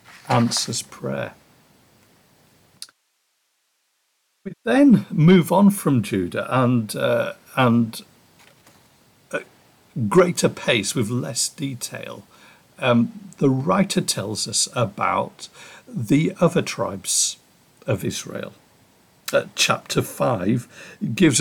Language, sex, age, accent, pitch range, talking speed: English, male, 60-79, British, 120-185 Hz, 85 wpm